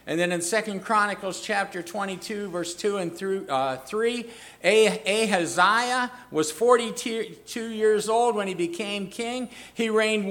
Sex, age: male, 50-69